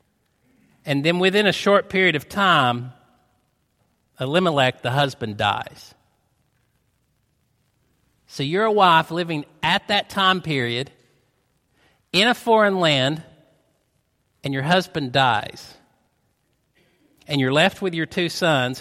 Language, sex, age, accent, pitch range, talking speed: English, male, 50-69, American, 135-190 Hz, 115 wpm